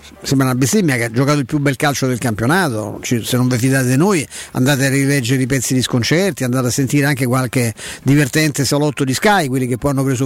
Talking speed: 235 wpm